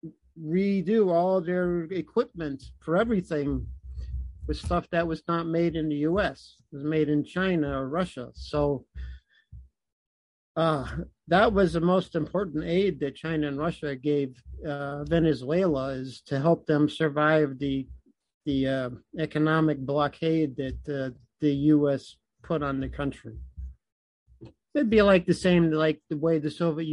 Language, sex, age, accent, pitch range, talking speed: English, male, 50-69, American, 140-175 Hz, 145 wpm